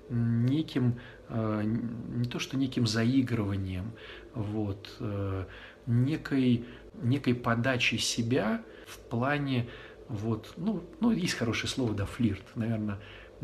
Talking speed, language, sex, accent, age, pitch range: 100 wpm, Russian, male, native, 50-69, 105-120 Hz